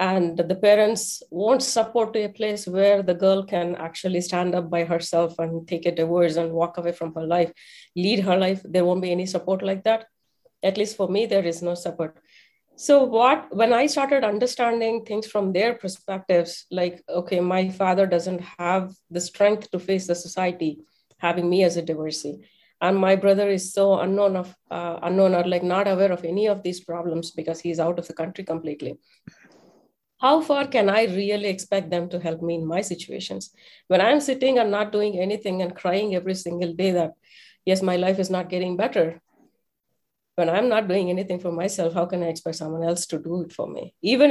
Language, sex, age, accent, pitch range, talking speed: English, female, 30-49, Indian, 175-205 Hz, 200 wpm